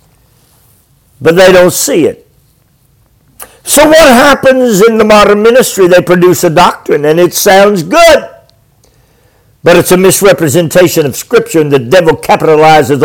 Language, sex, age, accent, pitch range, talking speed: English, male, 50-69, American, 155-215 Hz, 140 wpm